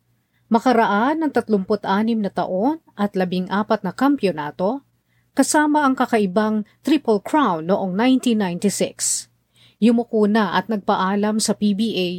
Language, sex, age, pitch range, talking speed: Filipino, female, 40-59, 180-240 Hz, 105 wpm